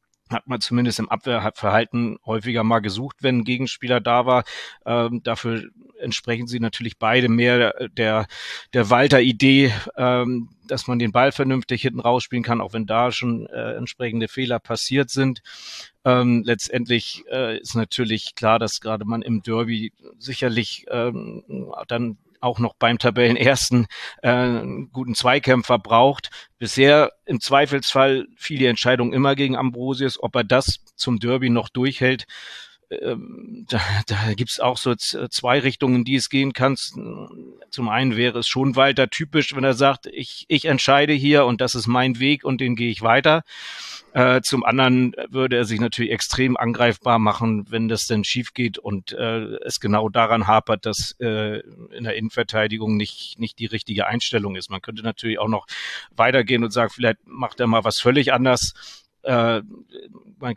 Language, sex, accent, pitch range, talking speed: German, male, German, 115-130 Hz, 165 wpm